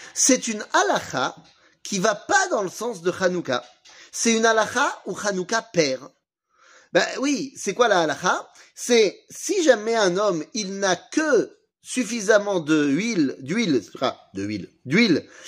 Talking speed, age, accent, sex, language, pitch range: 145 wpm, 30-49, French, male, French, 175-260 Hz